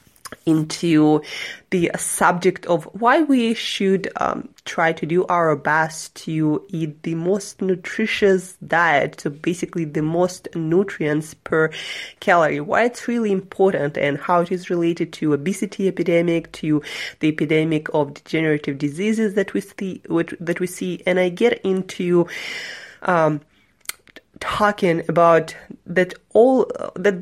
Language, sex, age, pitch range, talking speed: English, female, 20-39, 165-220 Hz, 135 wpm